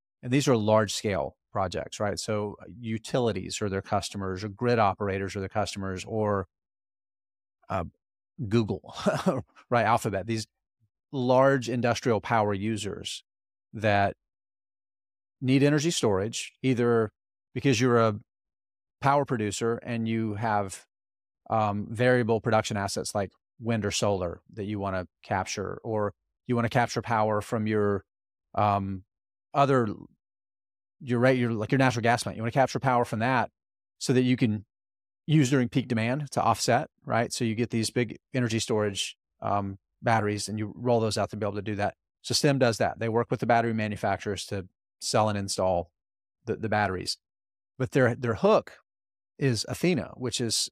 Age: 30-49